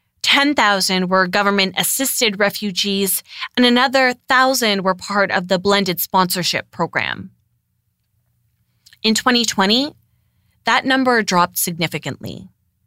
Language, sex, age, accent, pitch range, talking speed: English, female, 30-49, American, 175-215 Hz, 95 wpm